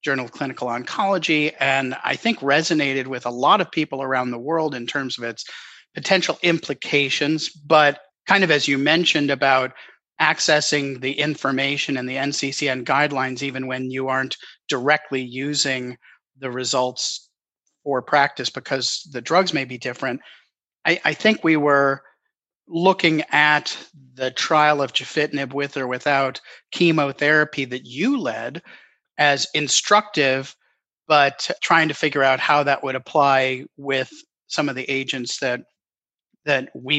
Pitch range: 135-165 Hz